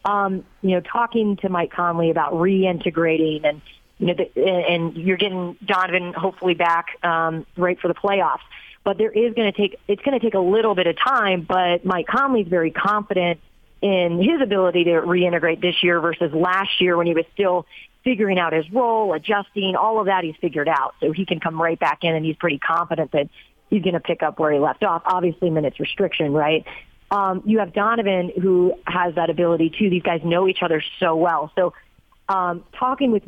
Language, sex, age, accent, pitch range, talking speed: English, female, 40-59, American, 170-205 Hz, 205 wpm